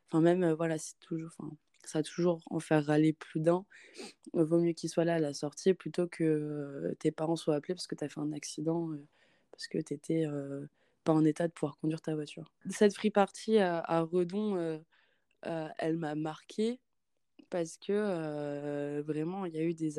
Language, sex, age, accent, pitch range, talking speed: French, female, 20-39, French, 155-175 Hz, 215 wpm